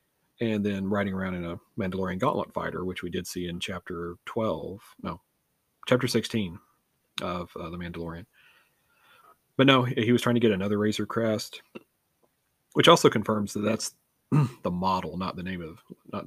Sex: male